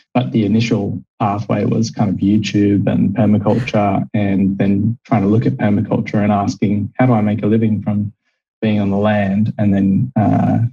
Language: English